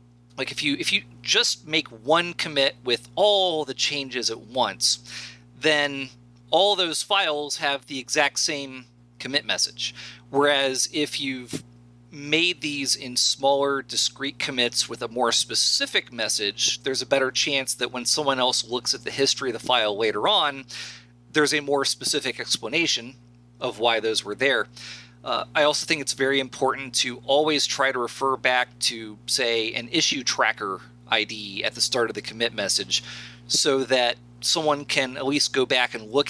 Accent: American